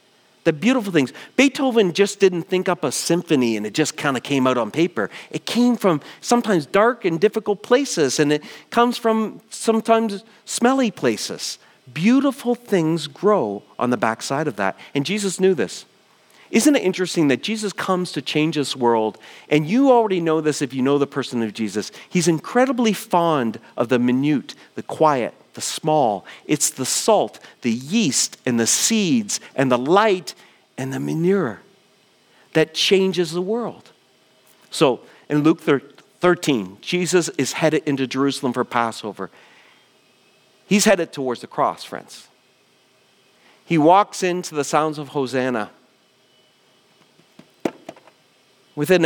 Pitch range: 130-200 Hz